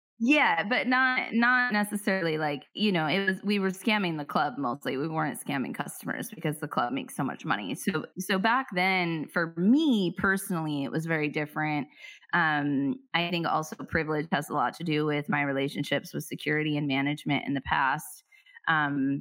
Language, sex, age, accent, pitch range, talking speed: English, female, 20-39, American, 145-180 Hz, 185 wpm